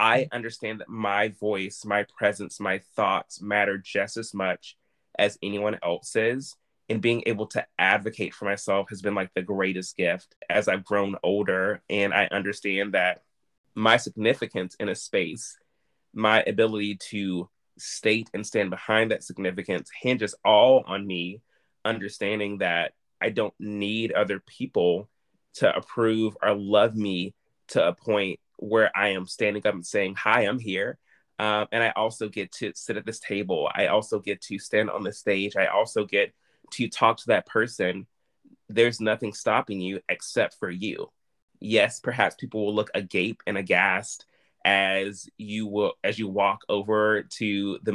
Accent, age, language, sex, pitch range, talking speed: American, 20-39, English, male, 100-110 Hz, 160 wpm